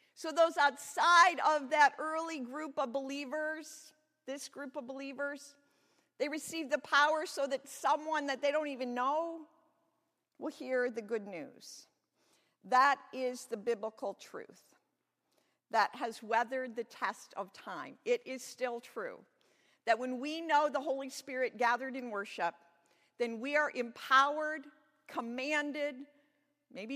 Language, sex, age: English, female, 50-69